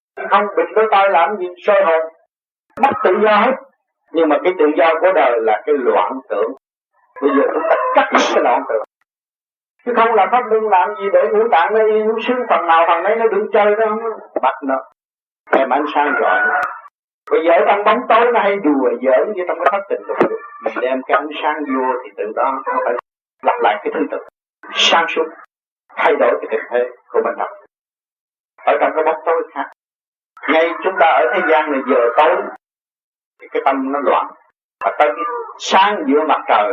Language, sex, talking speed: Vietnamese, male, 210 wpm